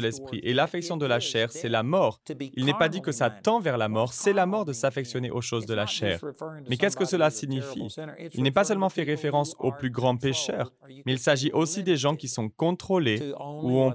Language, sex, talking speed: French, male, 235 wpm